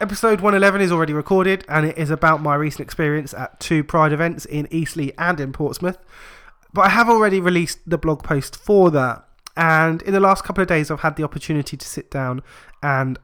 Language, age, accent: English, 20-39, British